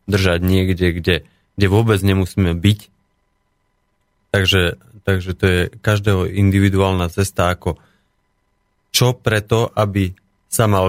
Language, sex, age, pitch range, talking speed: Slovak, male, 30-49, 90-105 Hz, 110 wpm